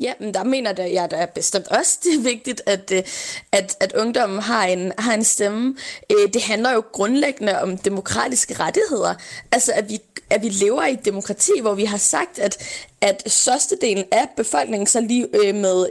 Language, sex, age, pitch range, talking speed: Danish, female, 20-39, 205-285 Hz, 190 wpm